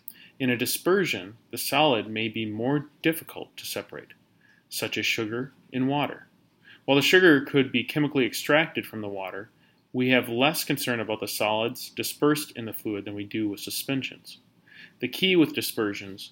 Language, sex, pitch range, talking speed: English, male, 110-140 Hz, 170 wpm